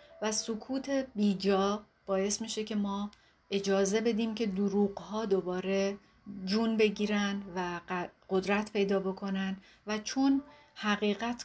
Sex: female